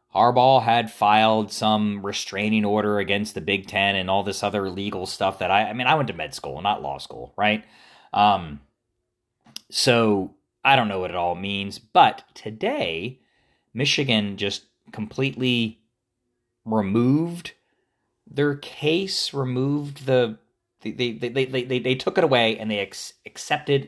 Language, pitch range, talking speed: English, 95-125 Hz, 155 wpm